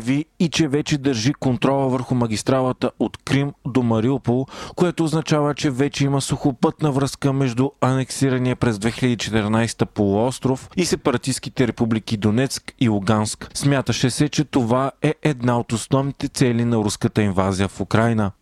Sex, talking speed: male, 140 wpm